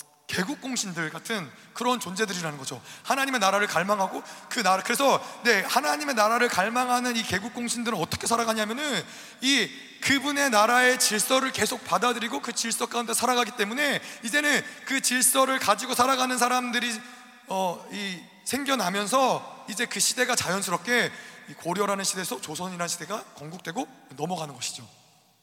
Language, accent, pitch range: Korean, native, 200-255 Hz